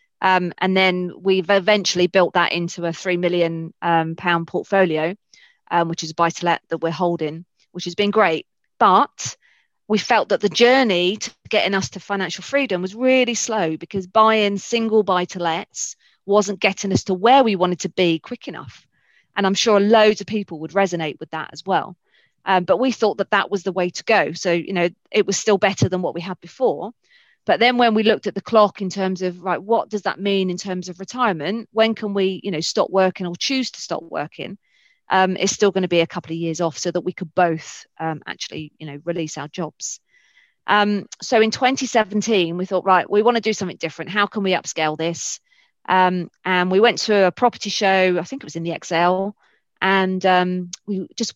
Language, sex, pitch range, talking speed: English, female, 175-210 Hz, 220 wpm